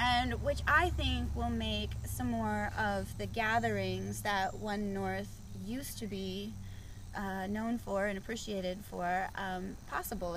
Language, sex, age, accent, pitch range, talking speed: English, female, 20-39, American, 185-220 Hz, 145 wpm